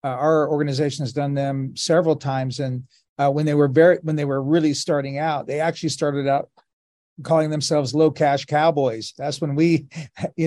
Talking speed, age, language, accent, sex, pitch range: 190 wpm, 40-59, English, American, male, 140-170 Hz